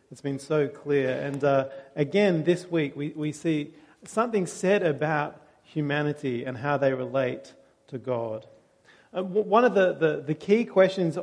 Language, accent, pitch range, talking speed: English, Australian, 140-180 Hz, 160 wpm